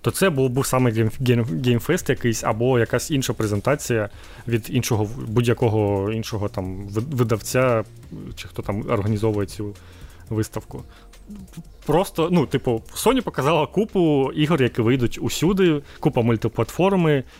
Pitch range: 110-135 Hz